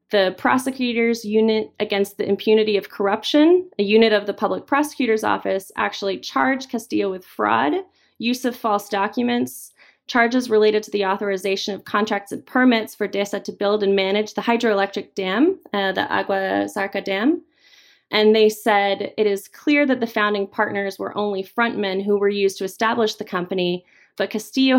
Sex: female